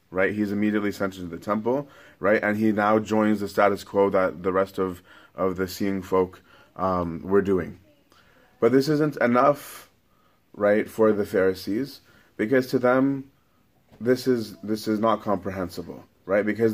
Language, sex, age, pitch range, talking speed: English, male, 30-49, 100-115 Hz, 160 wpm